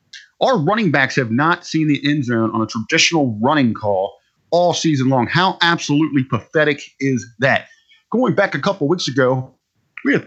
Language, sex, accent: English, male, American